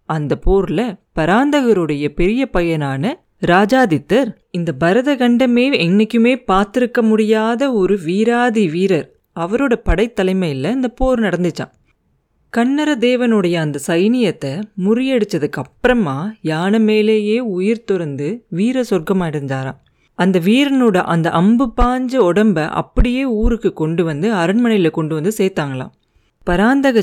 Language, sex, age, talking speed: Tamil, female, 30-49, 100 wpm